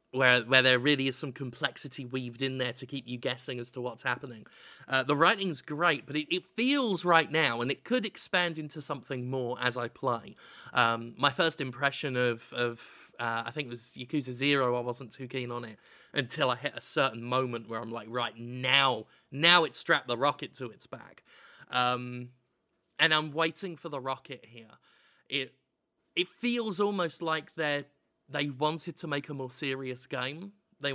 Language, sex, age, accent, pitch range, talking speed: English, male, 20-39, British, 125-165 Hz, 190 wpm